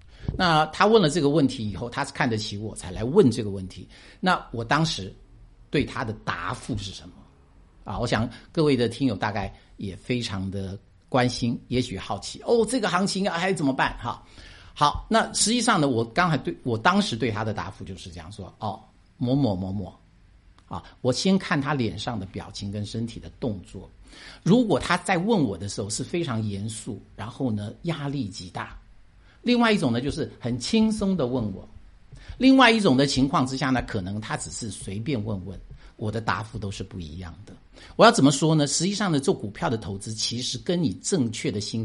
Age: 50-69